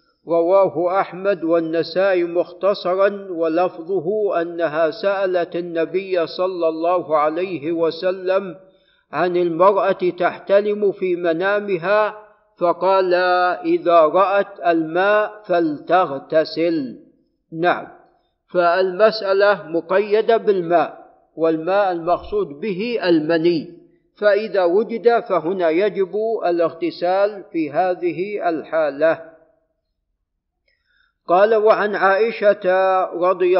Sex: male